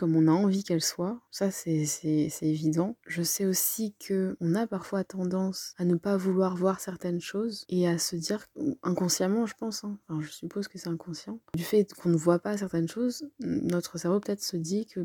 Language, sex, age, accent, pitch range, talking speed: French, female, 20-39, French, 170-195 Hz, 215 wpm